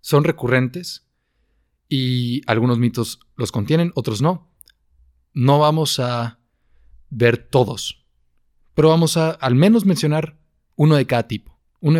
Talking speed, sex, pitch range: 125 wpm, male, 105-135 Hz